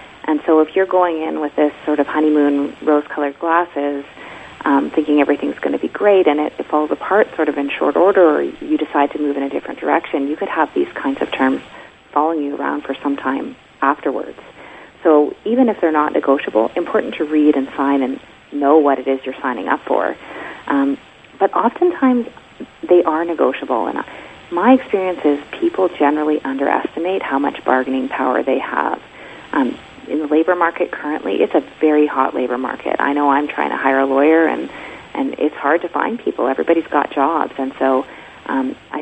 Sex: female